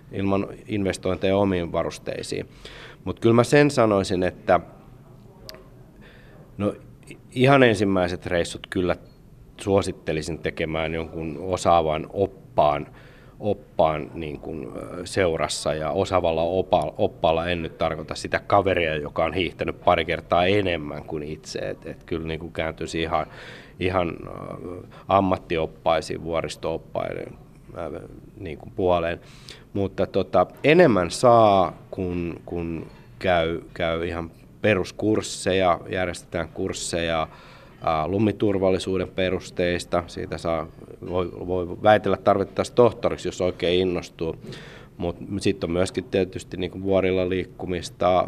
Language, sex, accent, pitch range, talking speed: Finnish, male, native, 85-100 Hz, 95 wpm